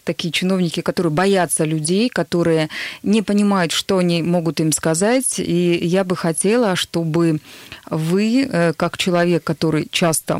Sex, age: female, 30-49